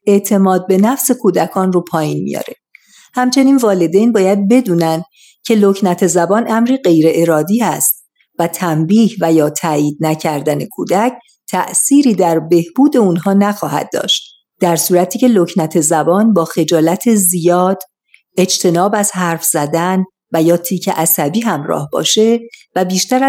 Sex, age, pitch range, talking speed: female, 50-69, 170-225 Hz, 130 wpm